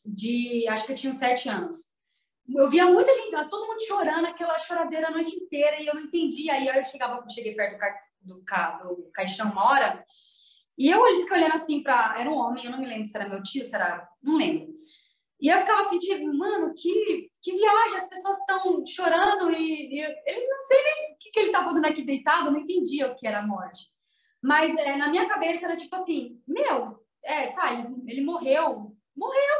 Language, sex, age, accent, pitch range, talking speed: Portuguese, female, 20-39, Brazilian, 225-340 Hz, 220 wpm